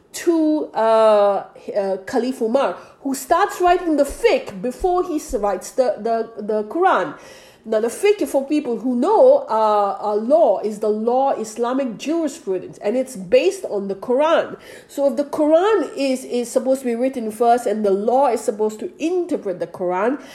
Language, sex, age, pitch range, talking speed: English, female, 50-69, 210-300 Hz, 175 wpm